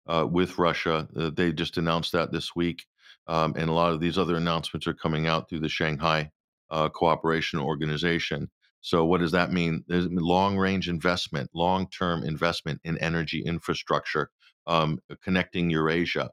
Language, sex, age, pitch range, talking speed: English, male, 50-69, 80-95 Hz, 160 wpm